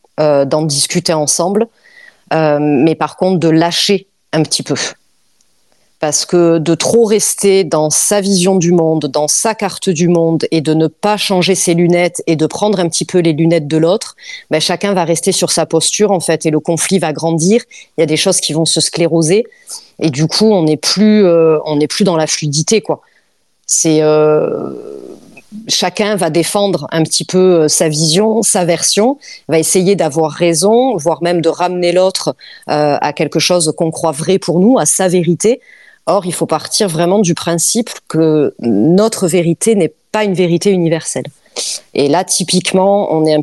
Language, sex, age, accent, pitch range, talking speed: French, female, 30-49, French, 155-195 Hz, 185 wpm